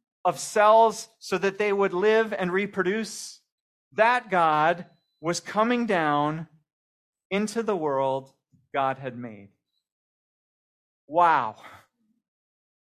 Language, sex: English, male